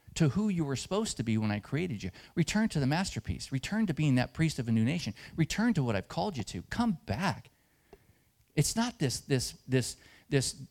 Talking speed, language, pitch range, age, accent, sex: 220 wpm, English, 115-145 Hz, 40-59, American, male